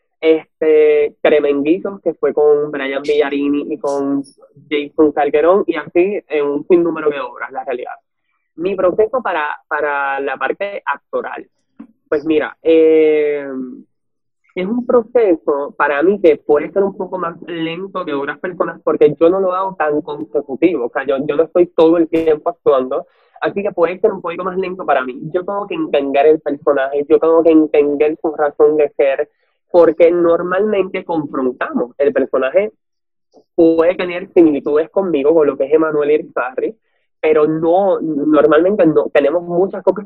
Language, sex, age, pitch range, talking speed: Spanish, male, 20-39, 150-210 Hz, 165 wpm